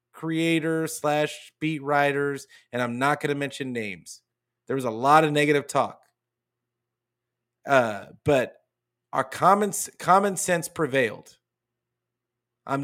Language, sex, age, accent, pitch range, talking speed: English, male, 30-49, American, 125-155 Hz, 120 wpm